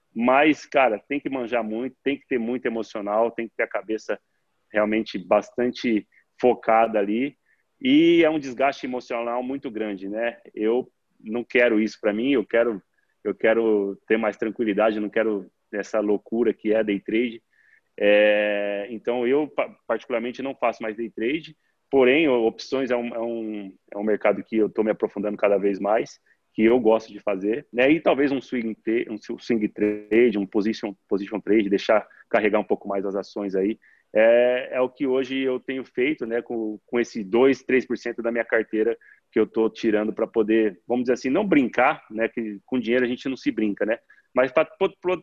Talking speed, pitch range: 190 wpm, 110-125 Hz